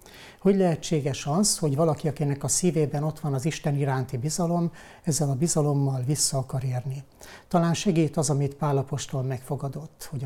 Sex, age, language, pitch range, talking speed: male, 60-79, Hungarian, 135-160 Hz, 165 wpm